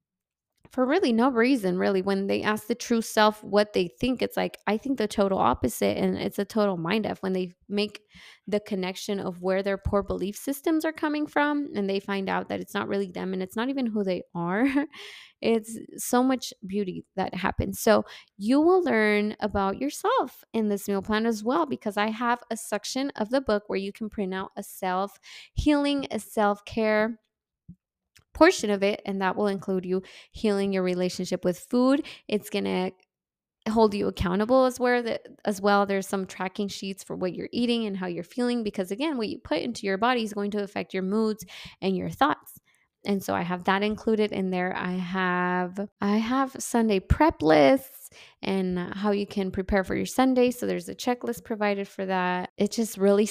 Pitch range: 190-230 Hz